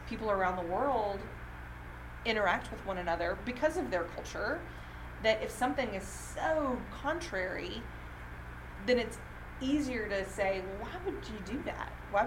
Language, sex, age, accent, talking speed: English, female, 30-49, American, 140 wpm